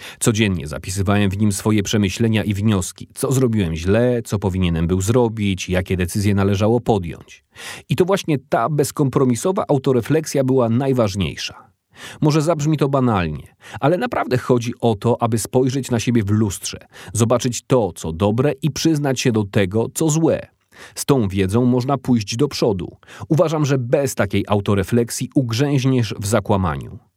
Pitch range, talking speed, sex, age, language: 105-135 Hz, 150 wpm, male, 30-49, Polish